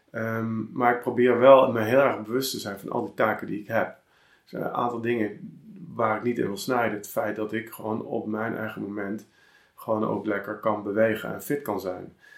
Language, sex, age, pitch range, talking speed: Dutch, male, 50-69, 105-120 Hz, 215 wpm